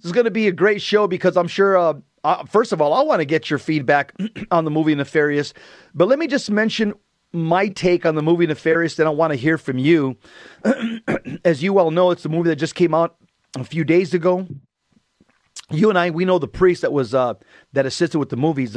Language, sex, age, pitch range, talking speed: English, male, 40-59, 140-185 Hz, 235 wpm